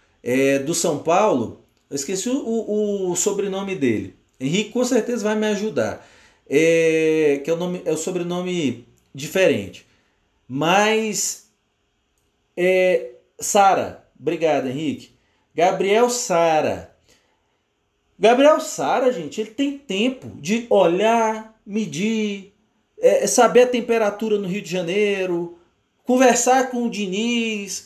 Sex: male